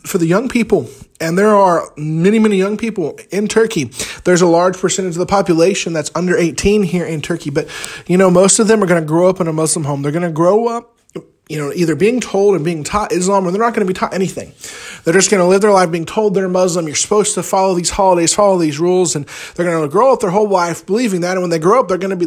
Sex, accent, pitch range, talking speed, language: male, American, 145-195 Hz, 280 wpm, English